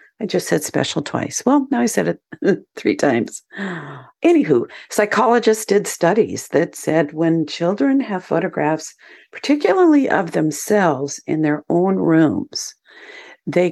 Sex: female